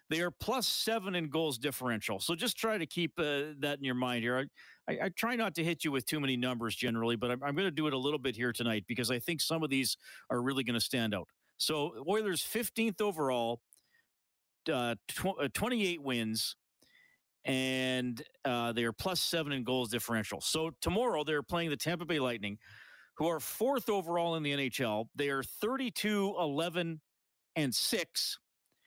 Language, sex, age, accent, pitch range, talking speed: English, male, 40-59, American, 130-180 Hz, 185 wpm